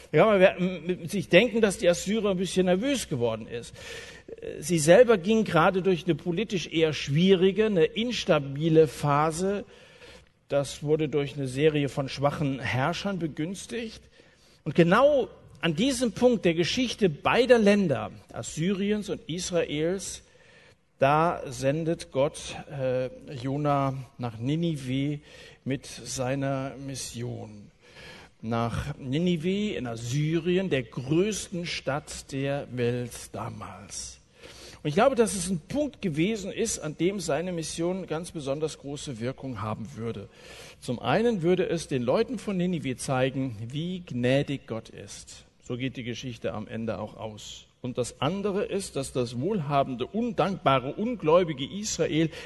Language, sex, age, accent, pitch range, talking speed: German, male, 50-69, German, 130-190 Hz, 135 wpm